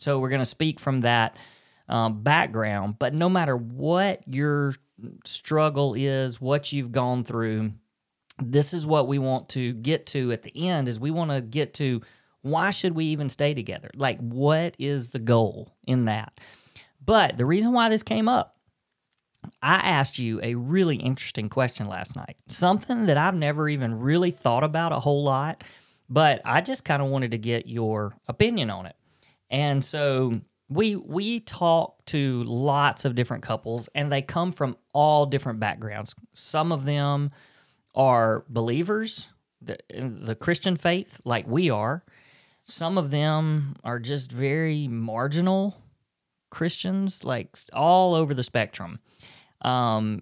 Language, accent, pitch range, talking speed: English, American, 120-160 Hz, 160 wpm